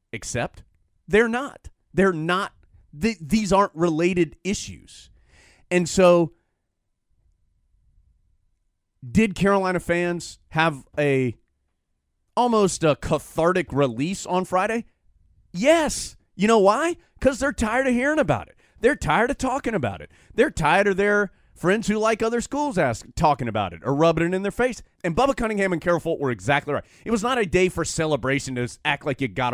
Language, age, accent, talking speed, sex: English, 30-49, American, 165 wpm, male